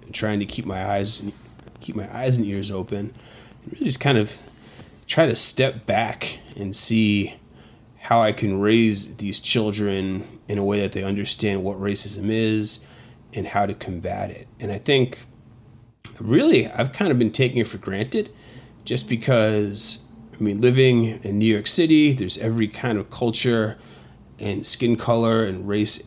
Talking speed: 165 wpm